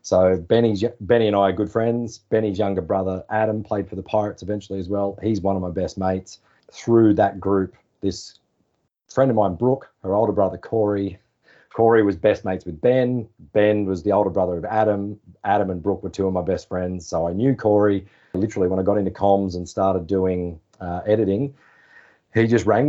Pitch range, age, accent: 95-110 Hz, 30-49, Australian